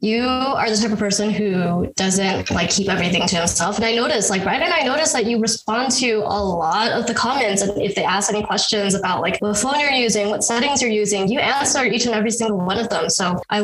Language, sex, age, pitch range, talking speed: English, female, 20-39, 180-220 Hz, 250 wpm